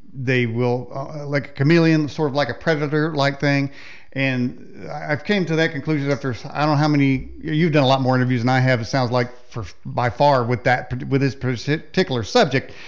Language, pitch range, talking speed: English, 130-155 Hz, 215 wpm